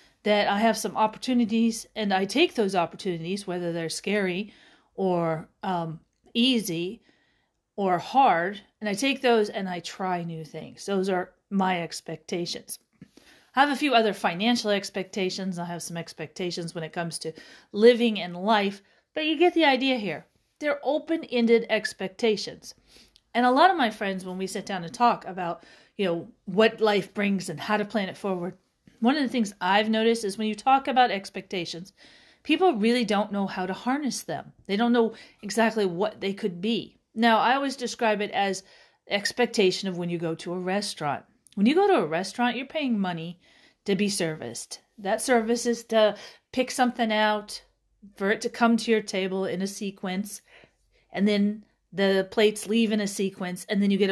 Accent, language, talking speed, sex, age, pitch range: American, English, 185 wpm, female, 40-59, 185-230 Hz